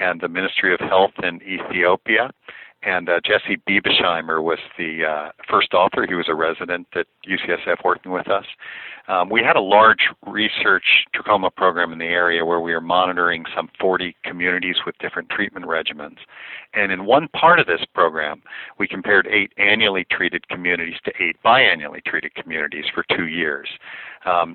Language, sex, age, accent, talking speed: English, male, 50-69, American, 170 wpm